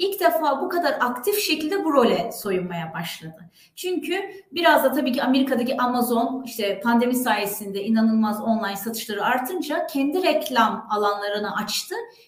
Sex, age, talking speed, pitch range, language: female, 30-49, 135 wpm, 225-320 Hz, Turkish